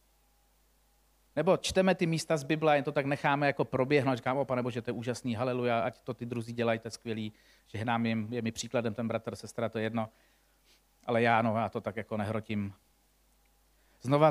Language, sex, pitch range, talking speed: Czech, male, 125-165 Hz, 195 wpm